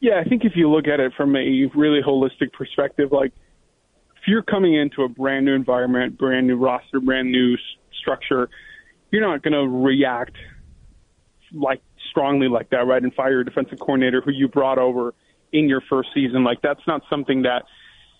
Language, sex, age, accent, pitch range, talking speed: English, male, 20-39, American, 130-150 Hz, 190 wpm